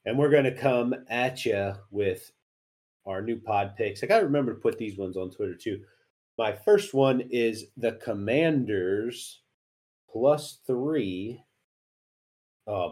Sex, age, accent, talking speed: male, 30-49, American, 150 wpm